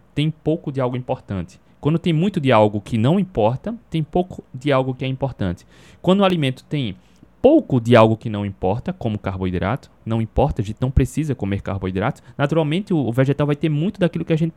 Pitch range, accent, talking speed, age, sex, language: 110-150 Hz, Brazilian, 205 wpm, 20-39, male, Portuguese